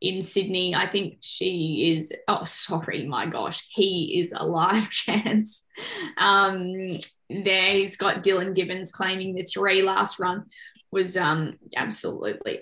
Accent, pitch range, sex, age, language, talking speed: Australian, 180-205 Hz, female, 10-29, English, 140 wpm